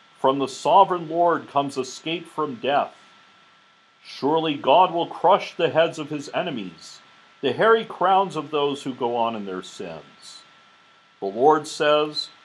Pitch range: 140-180 Hz